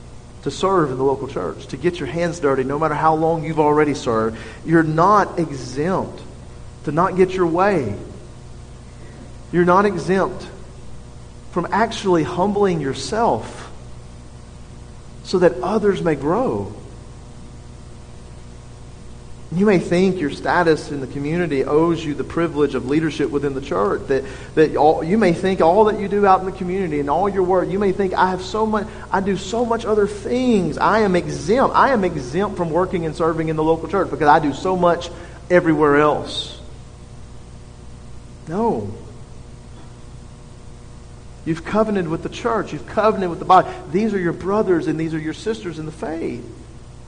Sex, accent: male, American